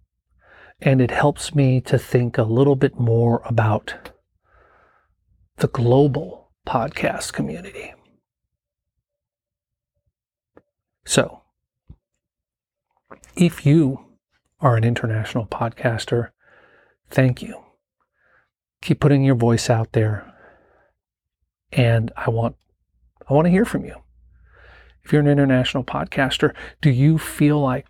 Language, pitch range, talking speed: English, 115-135 Hz, 105 wpm